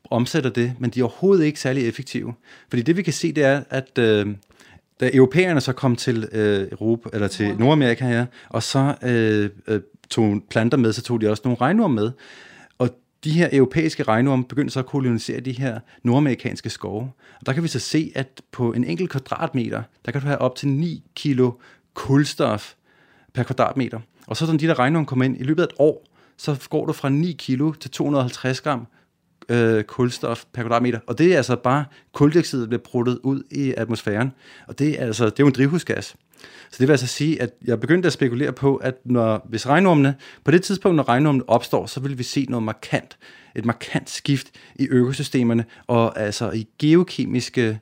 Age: 30-49